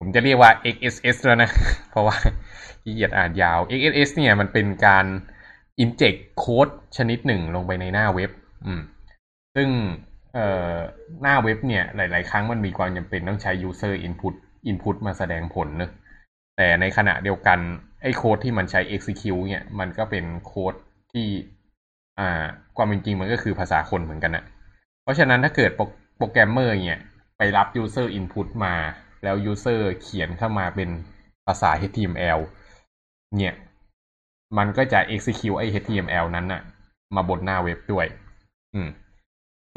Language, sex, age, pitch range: Thai, male, 20-39, 90-110 Hz